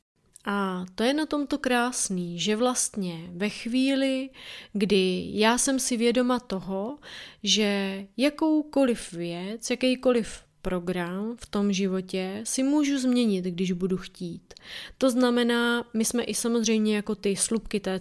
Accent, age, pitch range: native, 30-49, 200-245 Hz